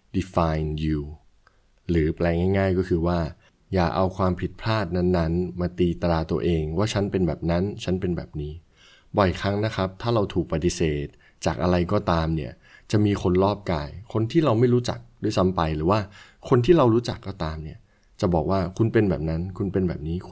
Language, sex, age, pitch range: Thai, male, 20-39, 85-100 Hz